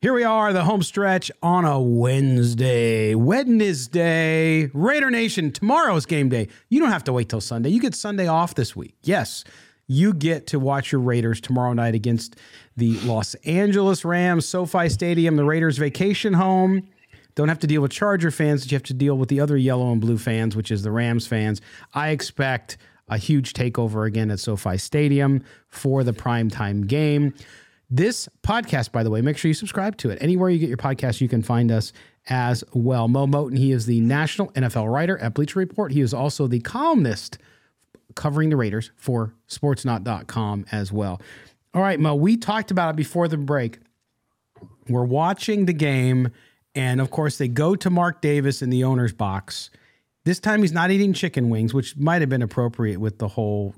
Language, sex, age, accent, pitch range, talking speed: English, male, 40-59, American, 115-170 Hz, 190 wpm